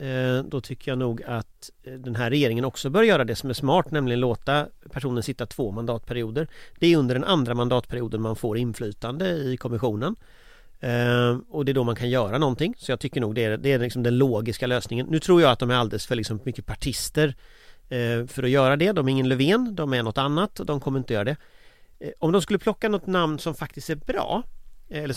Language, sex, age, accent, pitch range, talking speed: Swedish, male, 40-59, native, 120-155 Hz, 220 wpm